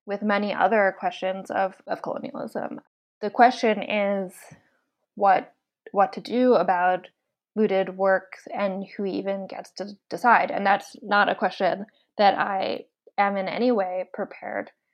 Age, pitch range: 20-39, 190-210 Hz